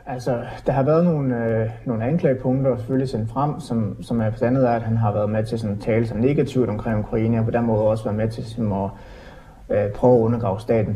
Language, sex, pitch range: Danish, male, 110-130 Hz